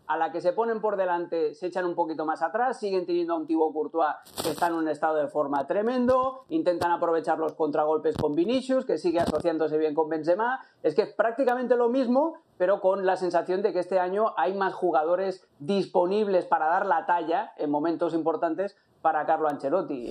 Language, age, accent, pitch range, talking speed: Spanish, 30-49, Spanish, 160-205 Hz, 200 wpm